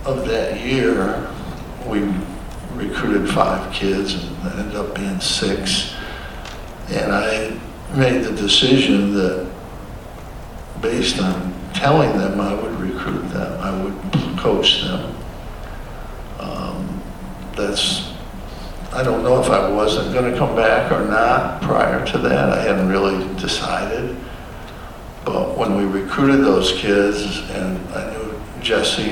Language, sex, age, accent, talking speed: English, male, 60-79, American, 125 wpm